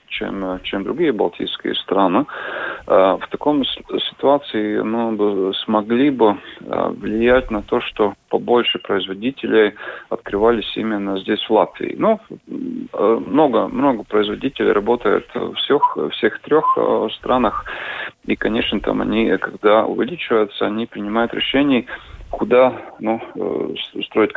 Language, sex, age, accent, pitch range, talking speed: Russian, male, 30-49, native, 105-135 Hz, 130 wpm